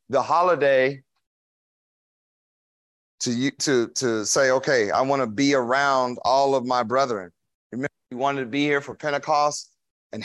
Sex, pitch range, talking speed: male, 115-160 Hz, 145 wpm